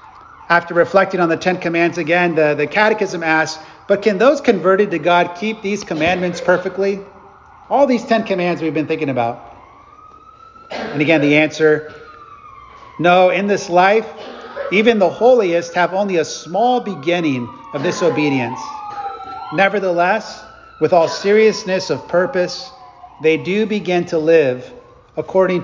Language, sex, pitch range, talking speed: English, male, 145-185 Hz, 140 wpm